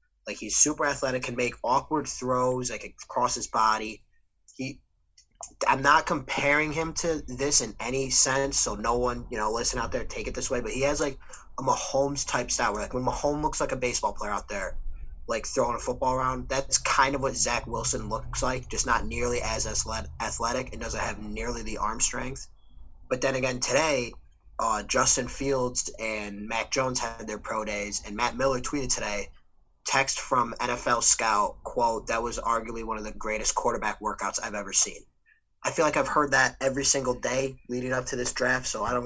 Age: 20-39